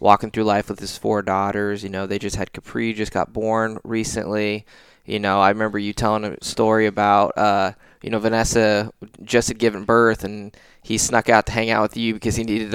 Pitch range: 100-115 Hz